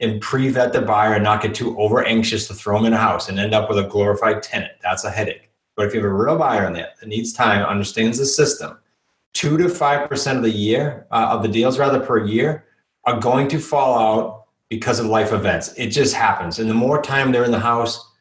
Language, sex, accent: English, male, American